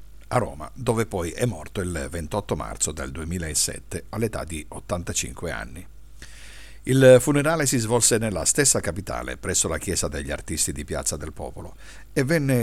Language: Italian